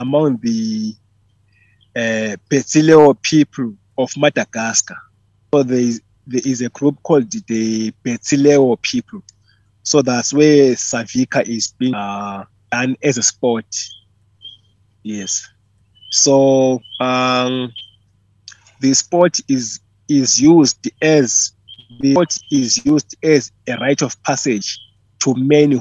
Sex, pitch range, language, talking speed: male, 105-135 Hz, English, 115 wpm